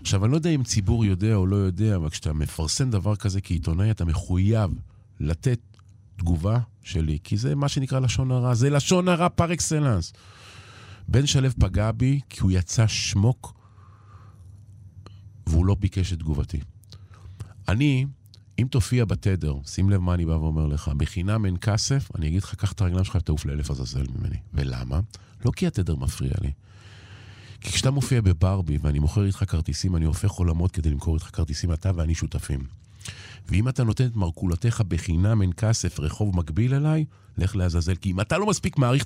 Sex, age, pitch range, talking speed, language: male, 50-69, 90-115 Hz, 175 wpm, Hebrew